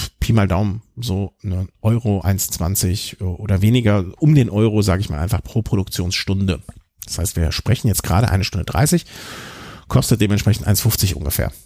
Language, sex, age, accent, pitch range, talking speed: German, male, 50-69, German, 95-130 Hz, 155 wpm